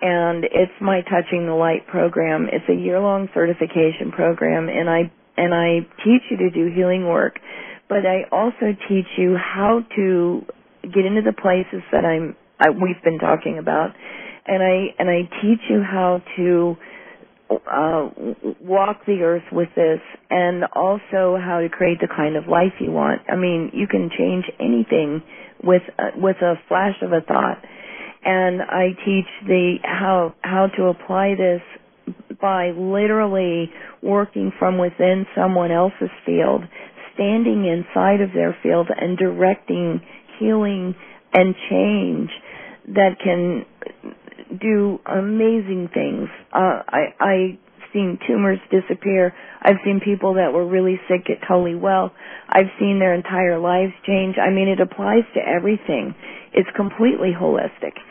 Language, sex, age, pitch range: English, female, 40-59, 175-195 Hz